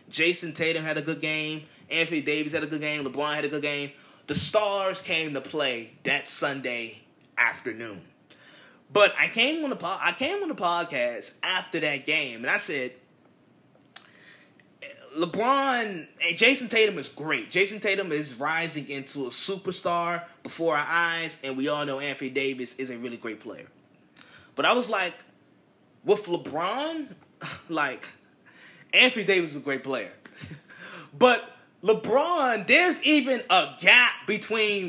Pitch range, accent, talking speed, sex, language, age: 155-245 Hz, American, 150 wpm, male, English, 20-39